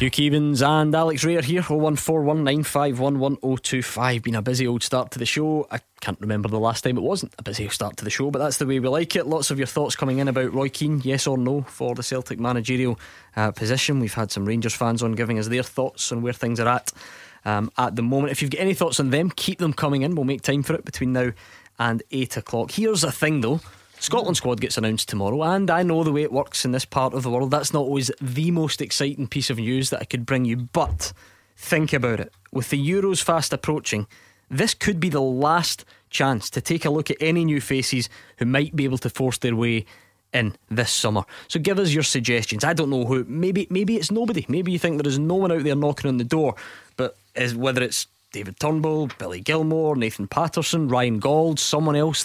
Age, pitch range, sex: 10-29, 120-155 Hz, male